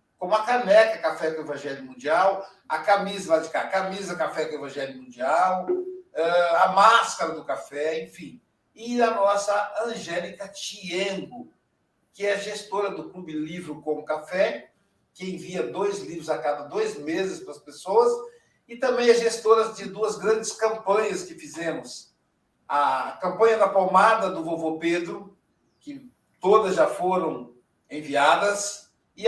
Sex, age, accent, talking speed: male, 60-79, Brazilian, 145 wpm